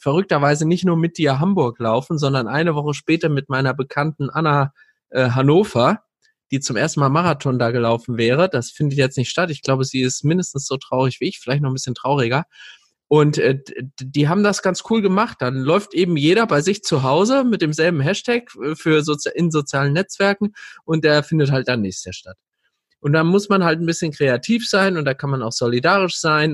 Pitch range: 125-160 Hz